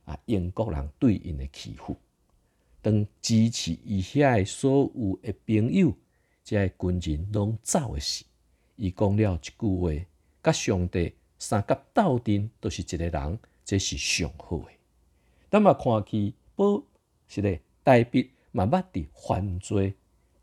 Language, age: Chinese, 50-69